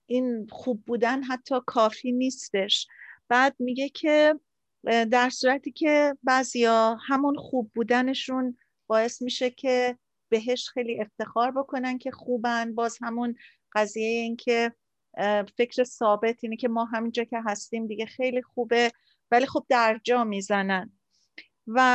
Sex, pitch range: female, 220-265 Hz